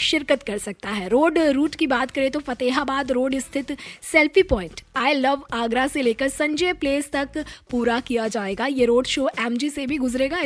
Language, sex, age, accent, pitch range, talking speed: Hindi, female, 20-39, native, 240-310 Hz, 190 wpm